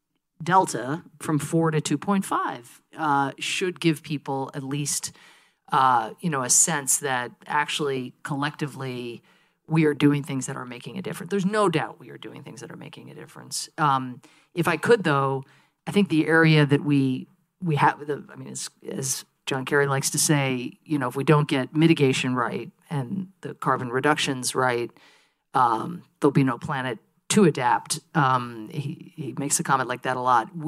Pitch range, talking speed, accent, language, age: 135-160 Hz, 180 wpm, American, English, 40-59